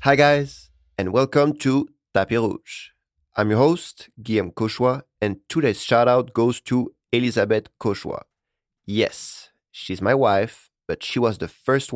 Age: 30-49